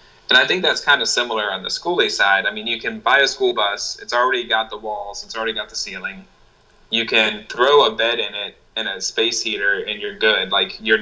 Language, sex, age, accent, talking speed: English, male, 20-39, American, 245 wpm